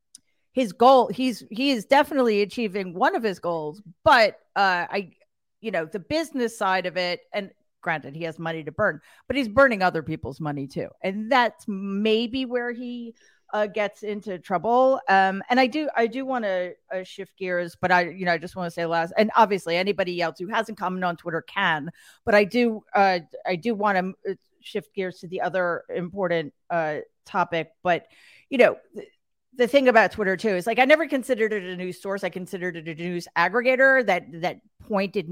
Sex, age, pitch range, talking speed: female, 40-59, 175-225 Hz, 200 wpm